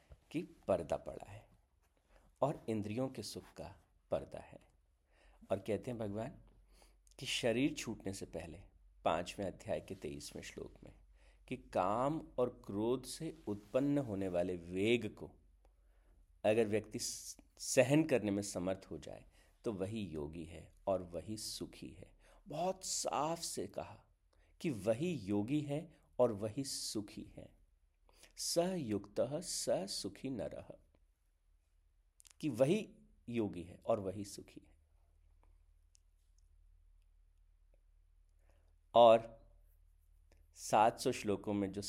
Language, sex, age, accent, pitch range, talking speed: Hindi, male, 50-69, native, 75-110 Hz, 120 wpm